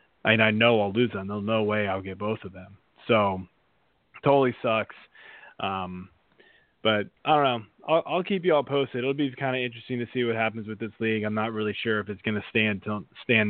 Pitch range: 105-130 Hz